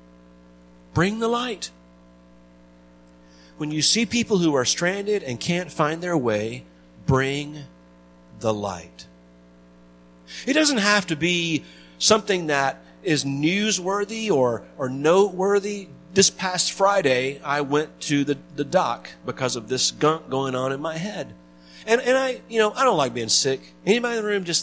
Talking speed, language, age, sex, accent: 155 wpm, English, 40-59, male, American